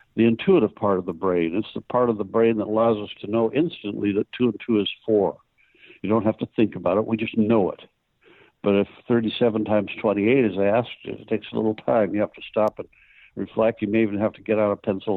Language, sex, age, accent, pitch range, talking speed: English, male, 60-79, American, 100-110 Hz, 245 wpm